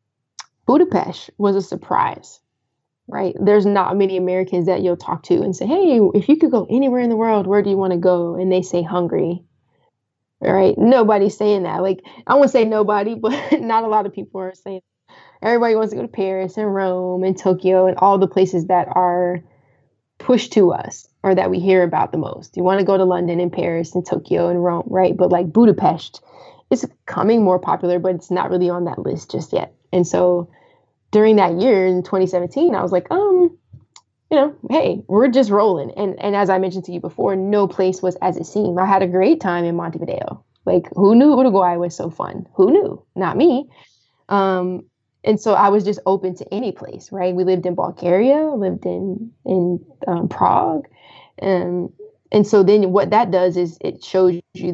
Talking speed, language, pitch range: 210 wpm, English, 180-210 Hz